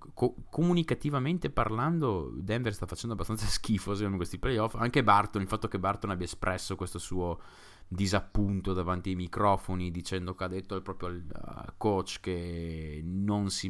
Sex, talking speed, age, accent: male, 150 wpm, 30-49, native